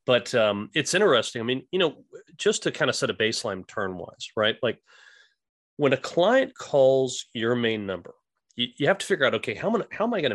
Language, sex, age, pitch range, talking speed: English, male, 30-49, 105-140 Hz, 210 wpm